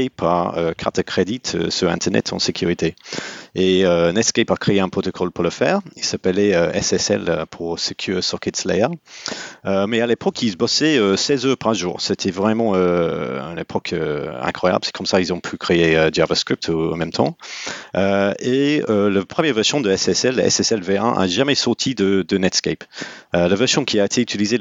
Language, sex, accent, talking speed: French, male, French, 200 wpm